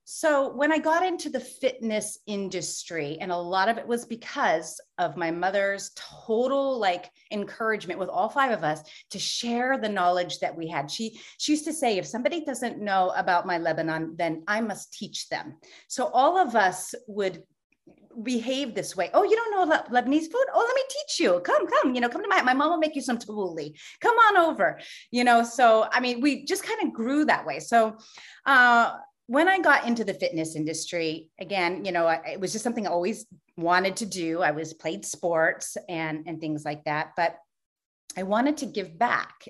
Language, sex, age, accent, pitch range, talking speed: English, female, 30-49, American, 165-250 Hz, 205 wpm